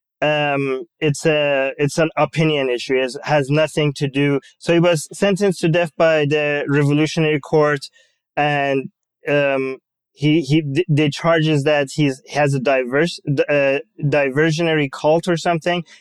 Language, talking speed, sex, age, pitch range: English, 145 wpm, male, 20-39, 140-160 Hz